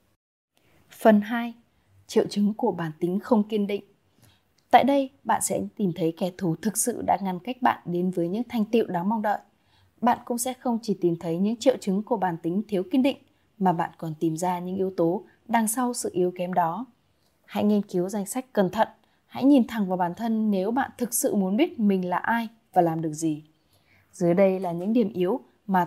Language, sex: Vietnamese, female